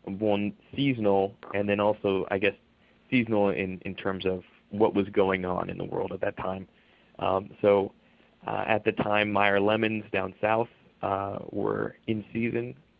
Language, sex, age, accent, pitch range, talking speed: English, male, 30-49, American, 95-110 Hz, 165 wpm